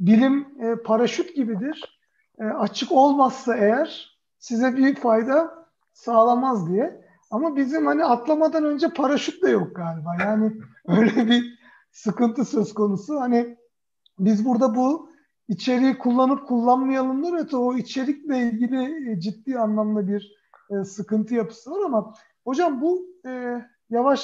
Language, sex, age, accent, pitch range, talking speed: Turkish, male, 50-69, native, 235-290 Hz, 120 wpm